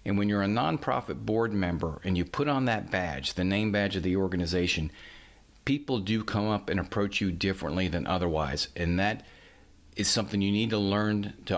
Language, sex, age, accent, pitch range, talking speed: English, male, 50-69, American, 90-110 Hz, 195 wpm